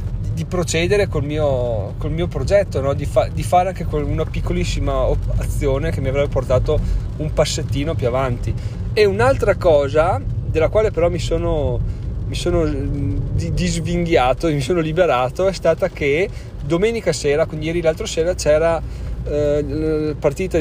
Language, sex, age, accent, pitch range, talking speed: Italian, male, 30-49, native, 120-155 Hz, 155 wpm